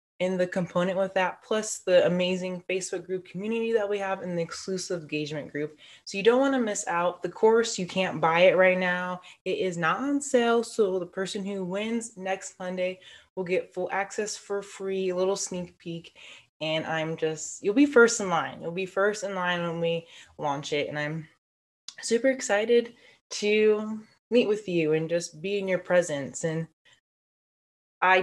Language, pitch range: English, 175-220 Hz